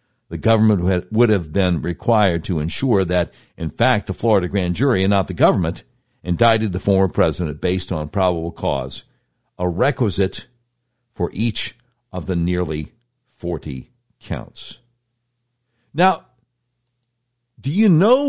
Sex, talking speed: male, 130 wpm